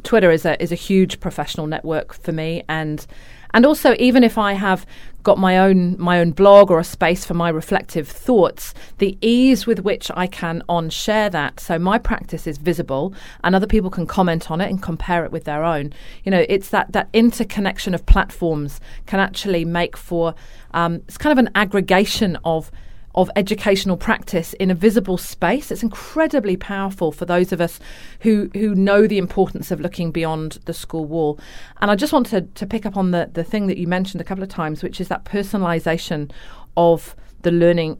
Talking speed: 200 wpm